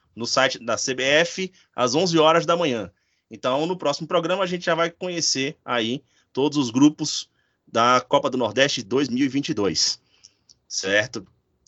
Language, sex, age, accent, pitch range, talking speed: Portuguese, male, 20-39, Brazilian, 115-160 Hz, 145 wpm